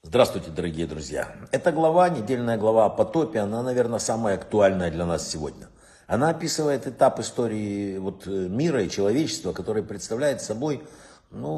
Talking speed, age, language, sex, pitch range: 145 wpm, 60-79, Russian, male, 100-150 Hz